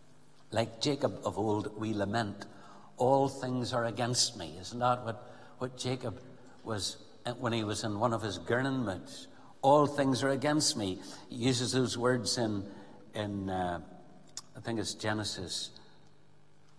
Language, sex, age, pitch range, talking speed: English, male, 60-79, 110-145 Hz, 145 wpm